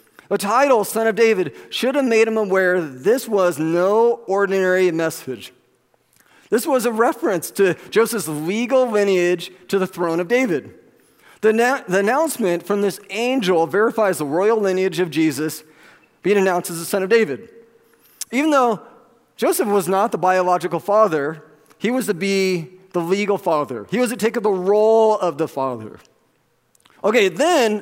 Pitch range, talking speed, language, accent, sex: 185-250 Hz, 165 wpm, English, American, male